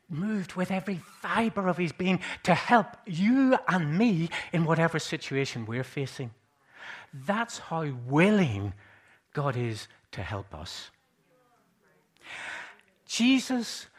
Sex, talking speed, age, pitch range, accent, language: male, 110 wpm, 60-79, 140-190 Hz, British, English